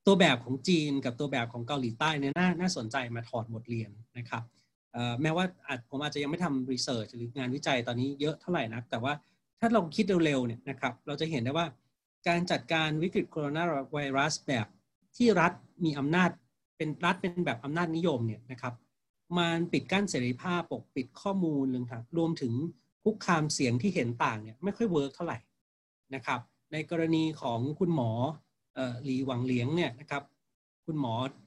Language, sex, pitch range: Thai, male, 125-165 Hz